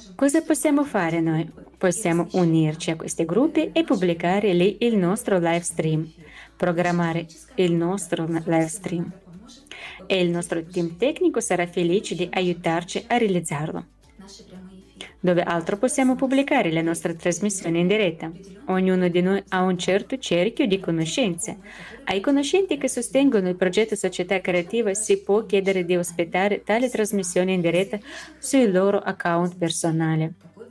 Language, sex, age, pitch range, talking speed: Italian, female, 20-39, 175-220 Hz, 140 wpm